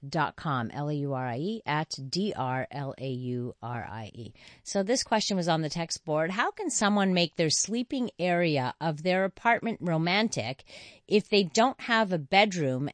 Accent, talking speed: American, 140 wpm